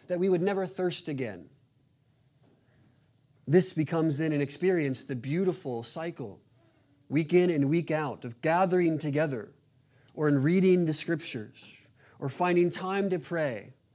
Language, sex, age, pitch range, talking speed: English, male, 30-49, 130-170 Hz, 140 wpm